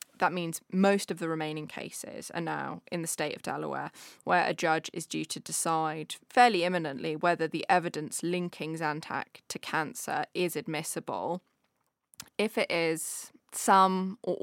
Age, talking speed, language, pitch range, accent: 10-29, 155 wpm, English, 155-175 Hz, British